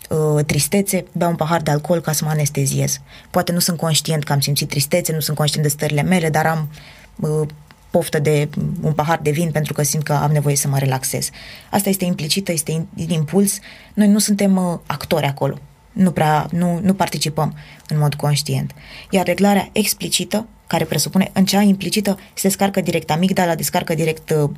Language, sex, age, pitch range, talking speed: Romanian, female, 20-39, 150-185 Hz, 185 wpm